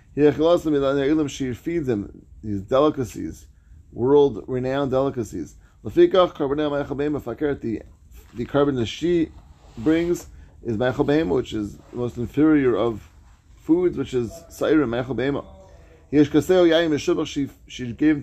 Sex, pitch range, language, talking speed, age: male, 100-145 Hz, English, 85 wpm, 30-49